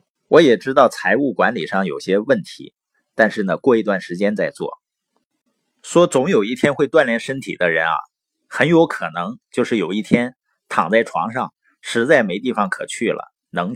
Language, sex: Chinese, male